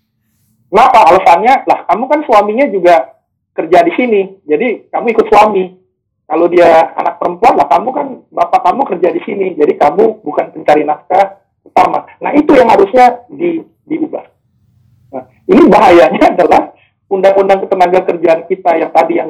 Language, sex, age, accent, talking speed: Indonesian, male, 50-69, native, 150 wpm